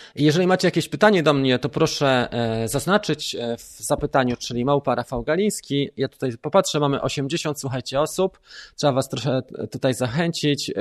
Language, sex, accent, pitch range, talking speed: Polish, male, native, 100-150 Hz, 145 wpm